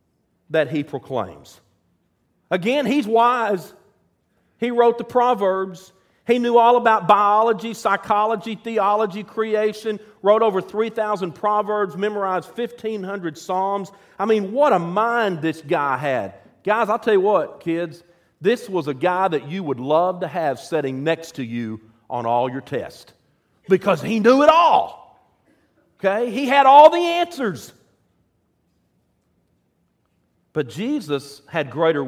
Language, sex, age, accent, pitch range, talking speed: English, male, 50-69, American, 165-270 Hz, 135 wpm